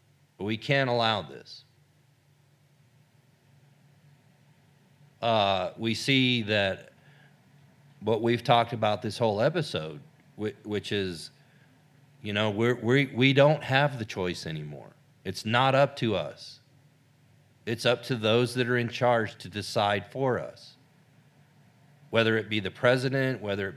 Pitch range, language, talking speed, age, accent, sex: 110-145 Hz, English, 135 wpm, 40-59, American, male